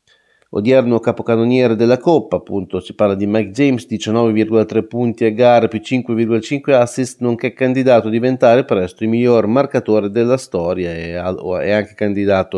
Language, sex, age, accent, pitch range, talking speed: Italian, male, 30-49, native, 105-140 Hz, 150 wpm